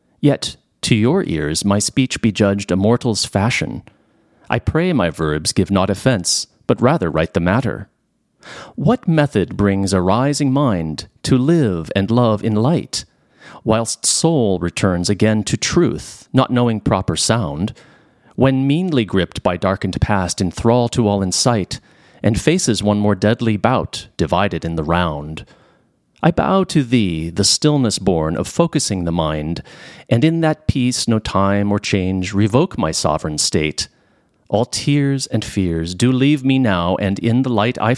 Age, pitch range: 40-59, 95-125 Hz